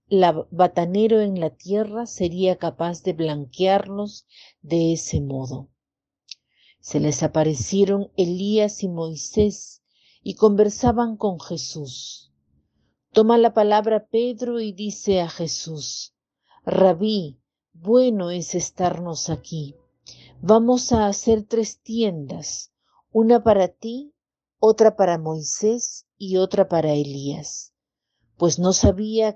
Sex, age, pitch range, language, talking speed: female, 50-69, 160-215 Hz, Spanish, 110 wpm